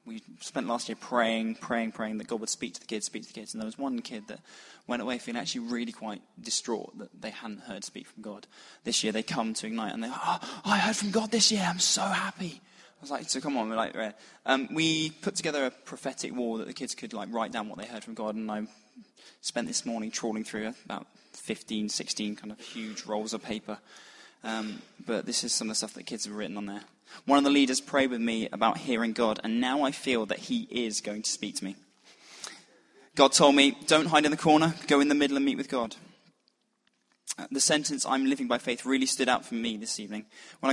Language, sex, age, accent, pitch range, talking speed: English, male, 20-39, British, 110-160 Hz, 245 wpm